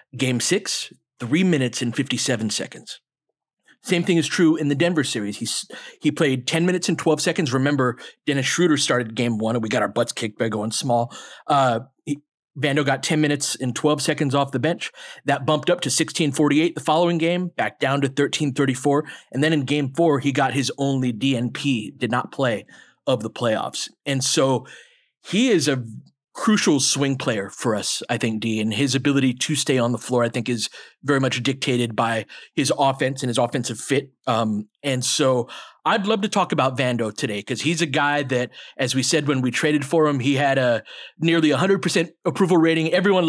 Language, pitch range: English, 130-155 Hz